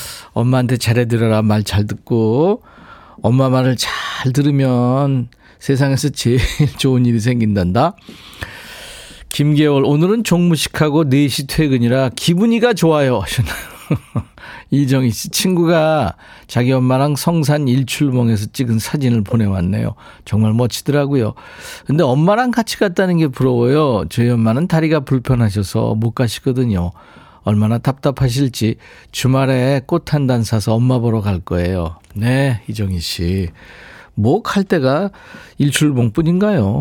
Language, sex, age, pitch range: Korean, male, 40-59, 110-150 Hz